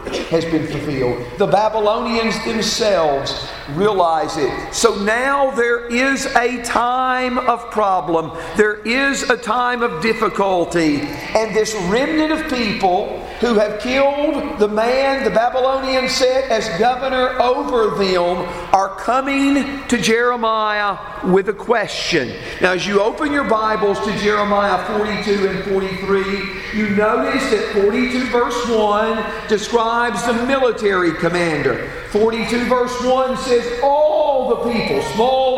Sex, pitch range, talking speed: male, 210-260 Hz, 125 wpm